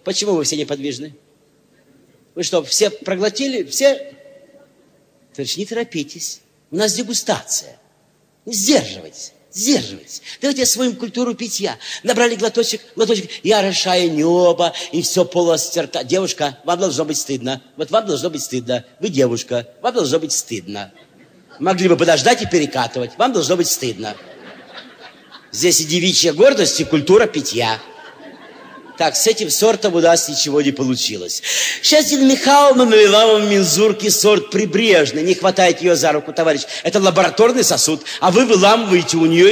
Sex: male